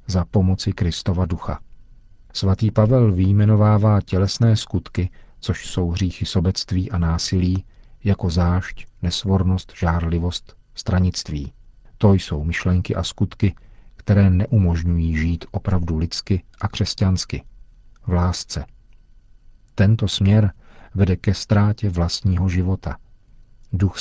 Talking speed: 105 wpm